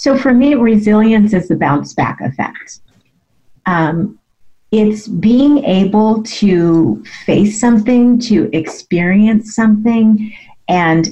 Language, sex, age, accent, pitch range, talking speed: English, female, 40-59, American, 165-215 Hz, 105 wpm